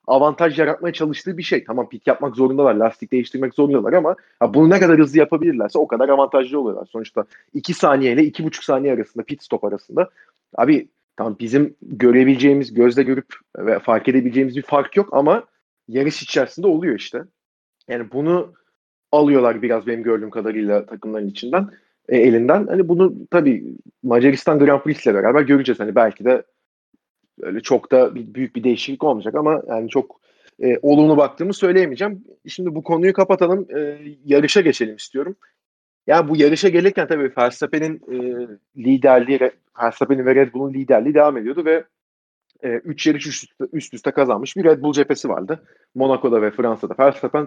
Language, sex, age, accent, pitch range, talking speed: Turkish, male, 40-59, native, 120-160 Hz, 160 wpm